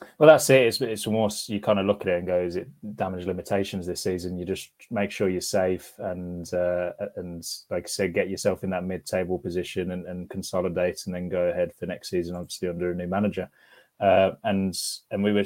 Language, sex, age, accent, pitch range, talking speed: English, male, 20-39, British, 90-105 Hz, 225 wpm